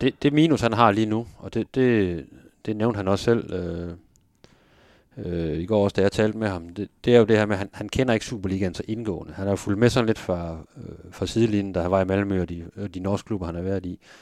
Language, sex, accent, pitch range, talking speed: Danish, male, native, 90-105 Hz, 280 wpm